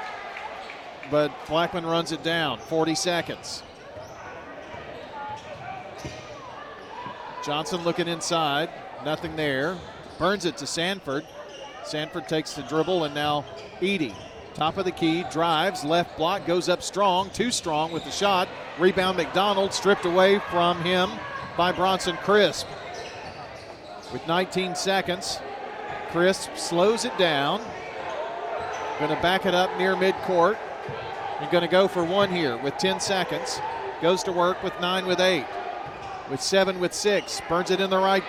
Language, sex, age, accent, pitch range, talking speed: English, male, 40-59, American, 165-200 Hz, 135 wpm